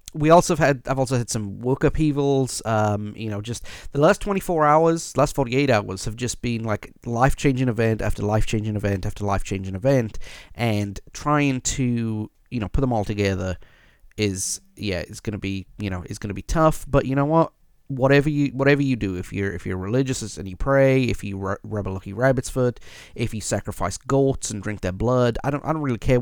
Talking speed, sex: 215 wpm, male